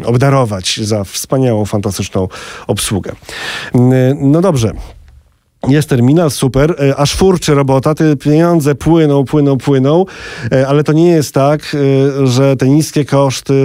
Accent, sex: native, male